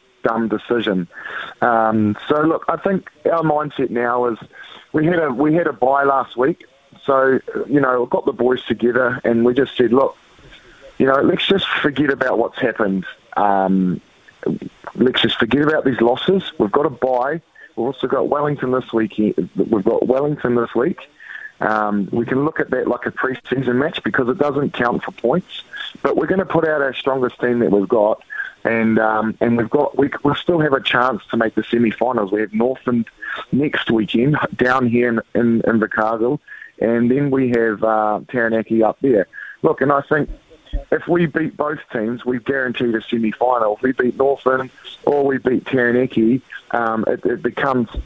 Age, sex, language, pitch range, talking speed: 30-49, male, English, 115-135 Hz, 185 wpm